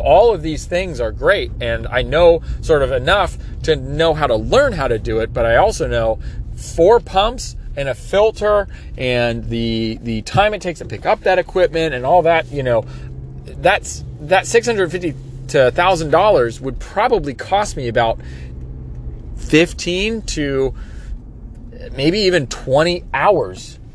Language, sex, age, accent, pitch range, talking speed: English, male, 30-49, American, 115-195 Hz, 160 wpm